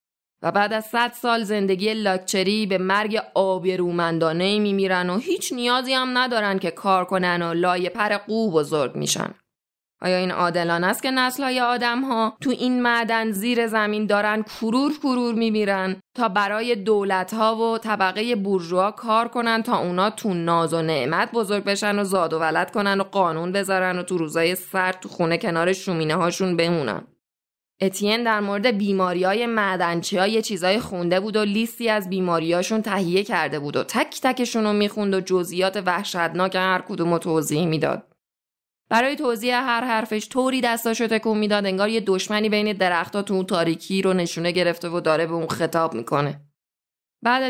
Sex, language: female, Persian